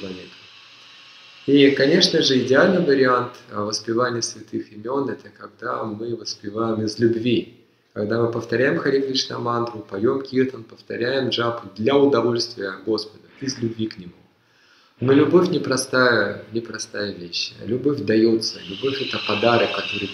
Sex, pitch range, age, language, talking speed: male, 105-130 Hz, 20-39, Russian, 130 wpm